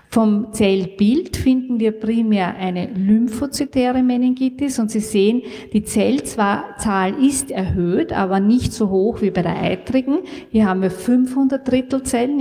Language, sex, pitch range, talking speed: German, female, 195-245 Hz, 140 wpm